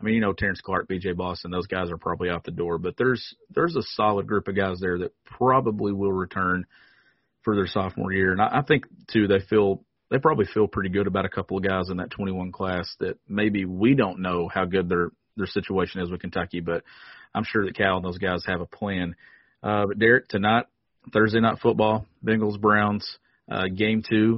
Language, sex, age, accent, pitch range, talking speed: English, male, 30-49, American, 95-110 Hz, 215 wpm